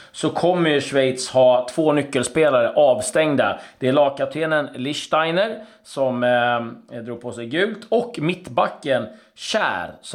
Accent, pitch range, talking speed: native, 120-155 Hz, 125 wpm